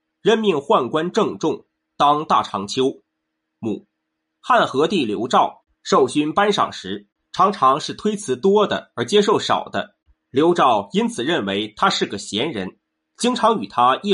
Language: Chinese